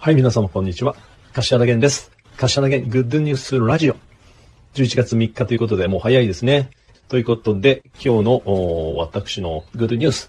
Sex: male